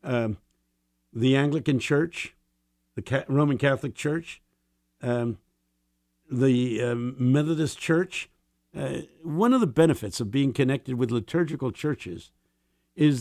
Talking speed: 115 wpm